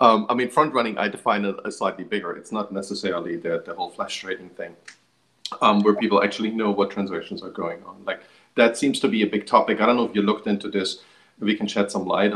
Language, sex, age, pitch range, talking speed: English, male, 40-59, 95-110 Hz, 250 wpm